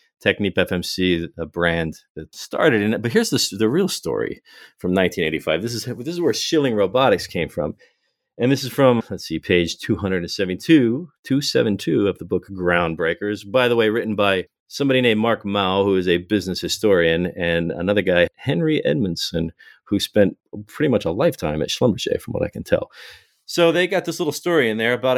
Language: English